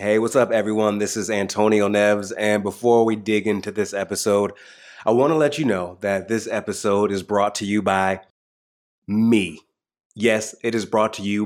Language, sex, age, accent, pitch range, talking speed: English, male, 20-39, American, 100-125 Hz, 185 wpm